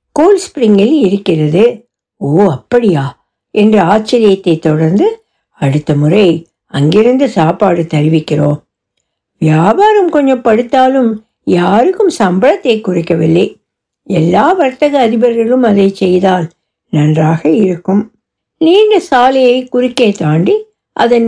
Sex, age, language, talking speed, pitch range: female, 60-79, Tamil, 85 wpm, 175-260 Hz